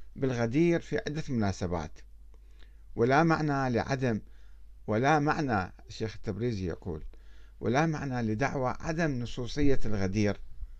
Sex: male